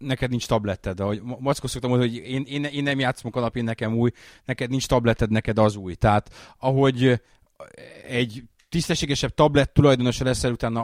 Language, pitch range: Hungarian, 105-130 Hz